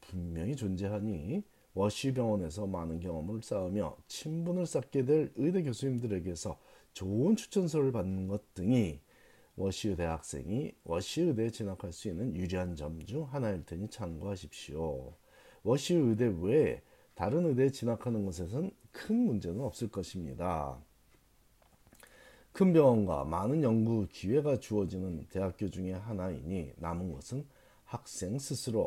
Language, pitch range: Korean, 90-135 Hz